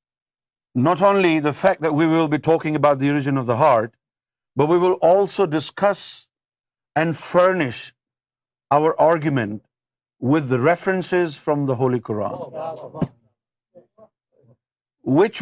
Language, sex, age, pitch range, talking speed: Urdu, male, 50-69, 125-180 Hz, 125 wpm